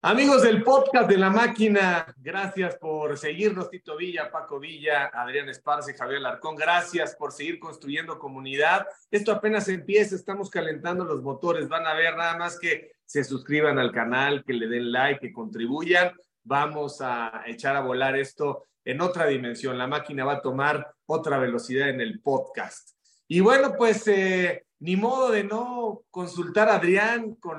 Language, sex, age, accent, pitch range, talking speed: Spanish, male, 40-59, Mexican, 145-205 Hz, 165 wpm